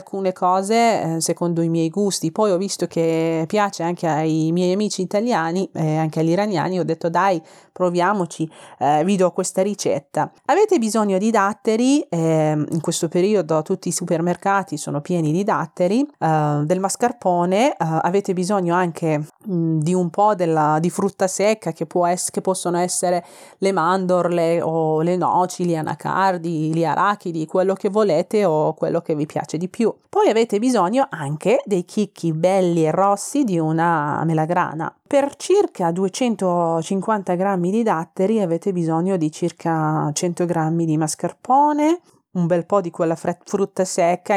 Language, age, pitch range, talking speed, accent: Italian, 30-49, 160-195 Hz, 155 wpm, native